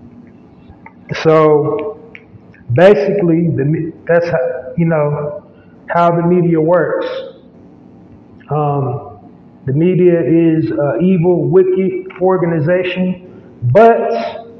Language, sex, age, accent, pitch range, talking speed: English, male, 30-49, American, 160-185 Hz, 80 wpm